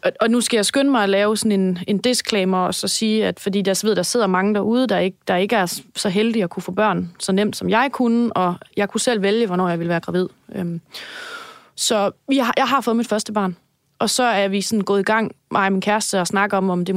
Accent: native